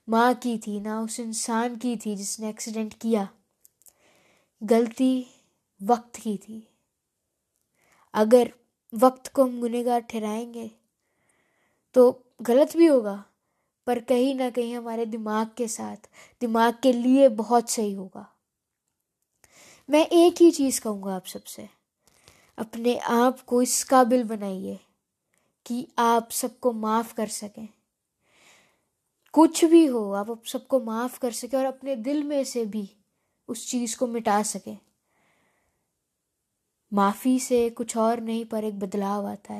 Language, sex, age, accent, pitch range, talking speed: Hindi, female, 20-39, native, 220-260 Hz, 125 wpm